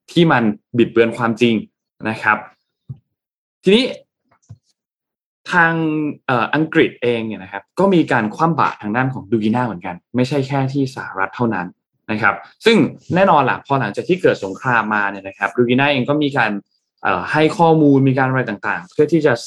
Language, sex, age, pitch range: Thai, male, 20-39, 105-150 Hz